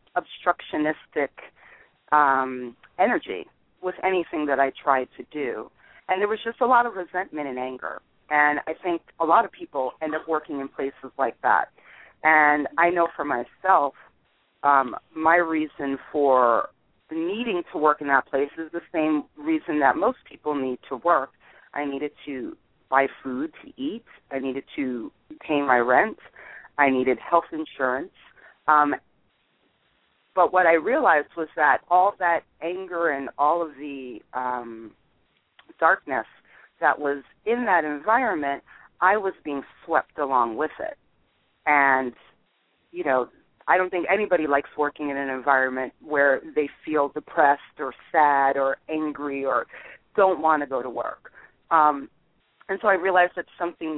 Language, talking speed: English, 155 wpm